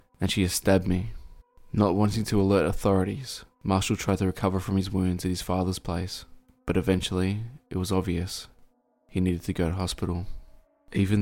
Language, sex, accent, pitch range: English, male, Australian, 90-100 Hz